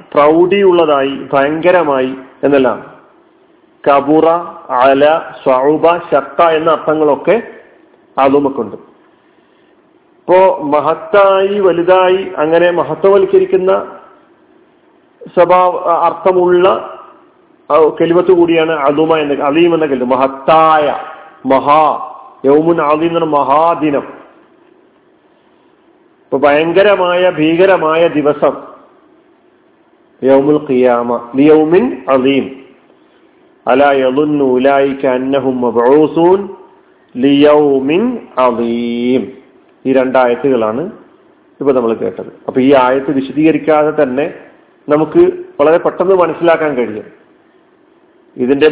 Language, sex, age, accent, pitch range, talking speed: Malayalam, male, 50-69, native, 140-190 Hz, 55 wpm